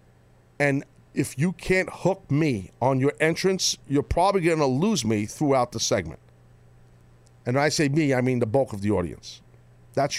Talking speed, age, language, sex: 185 wpm, 50-69, English, male